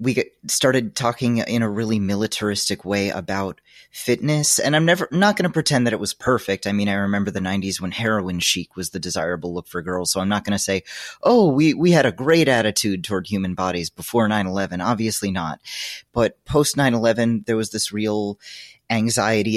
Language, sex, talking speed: English, male, 200 wpm